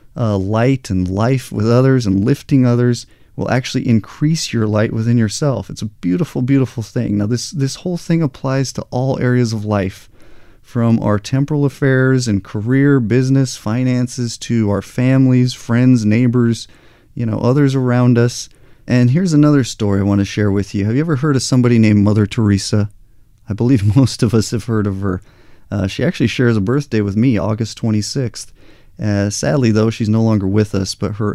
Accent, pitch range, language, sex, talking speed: American, 105-130 Hz, English, male, 190 wpm